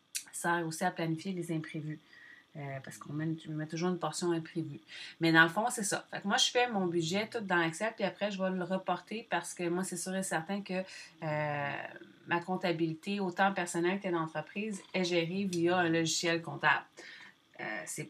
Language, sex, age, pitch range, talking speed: French, female, 30-49, 165-195 Hz, 200 wpm